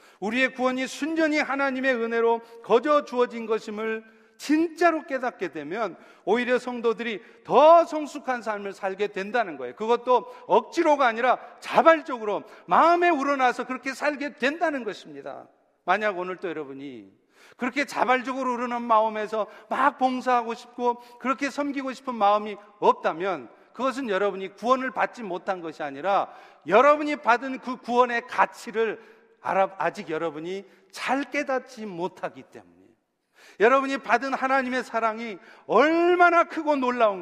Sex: male